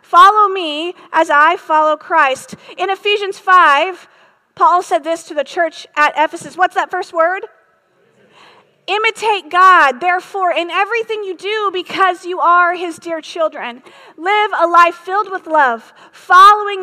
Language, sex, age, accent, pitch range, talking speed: English, female, 40-59, American, 305-375 Hz, 145 wpm